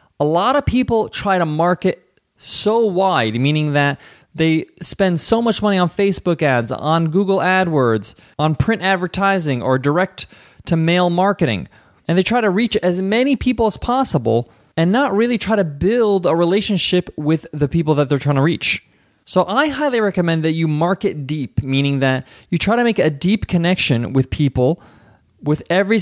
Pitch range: 145-200 Hz